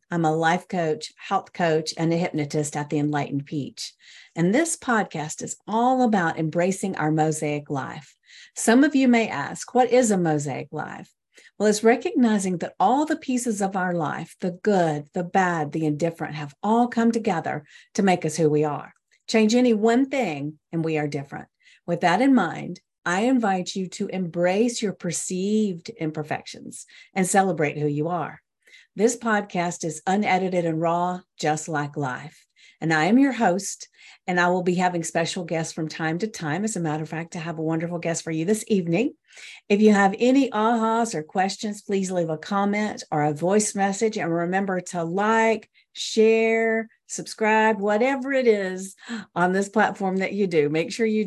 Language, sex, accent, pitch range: English, female, American, 160-220 Hz